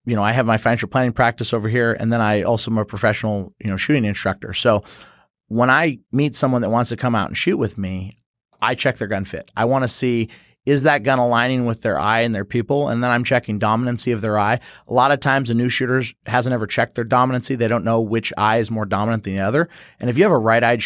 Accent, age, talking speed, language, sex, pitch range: American, 30-49, 260 wpm, English, male, 110-125 Hz